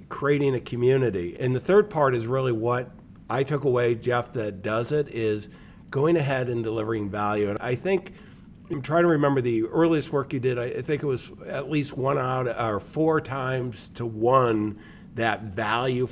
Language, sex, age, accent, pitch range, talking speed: English, male, 50-69, American, 115-145 Hz, 185 wpm